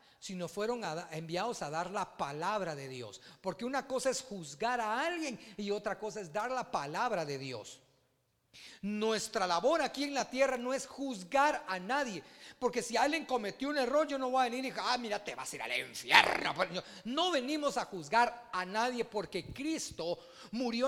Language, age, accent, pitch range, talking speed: Spanish, 40-59, Mexican, 195-275 Hz, 190 wpm